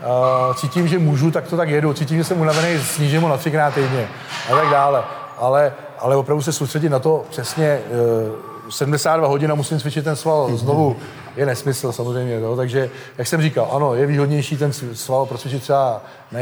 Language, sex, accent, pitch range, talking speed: Czech, male, native, 130-150 Hz, 185 wpm